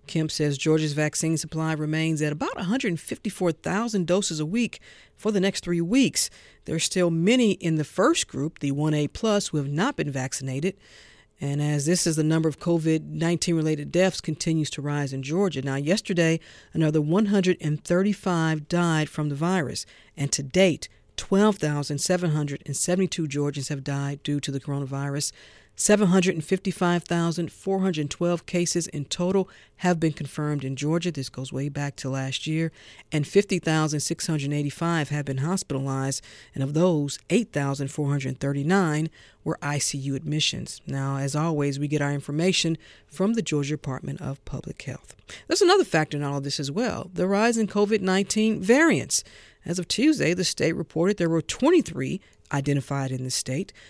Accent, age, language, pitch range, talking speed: American, 50-69, English, 140-185 Hz, 150 wpm